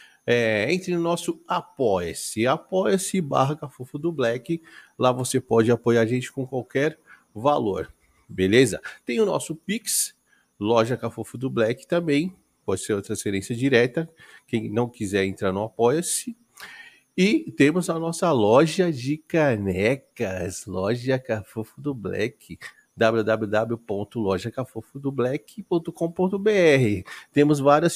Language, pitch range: Portuguese, 115-170 Hz